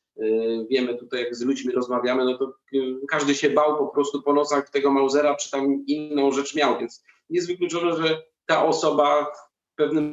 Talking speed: 180 wpm